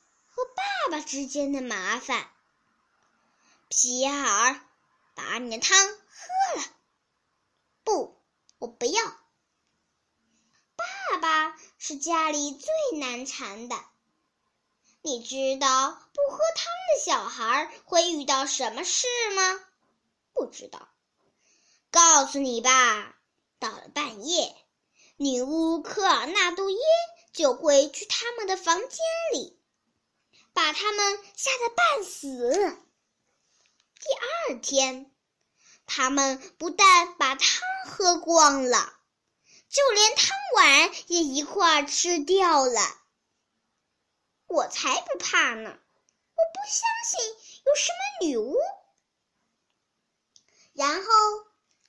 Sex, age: male, 10-29